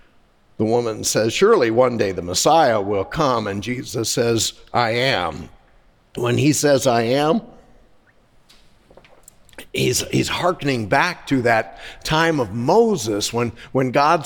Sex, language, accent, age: male, English, American, 50-69